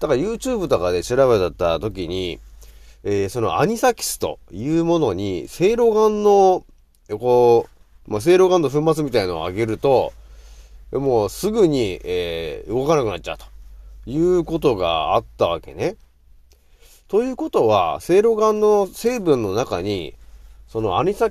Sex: male